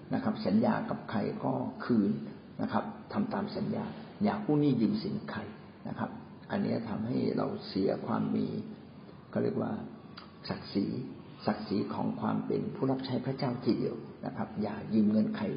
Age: 60-79